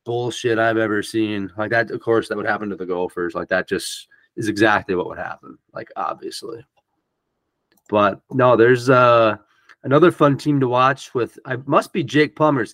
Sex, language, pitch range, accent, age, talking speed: male, English, 110-135 Hz, American, 30-49, 185 wpm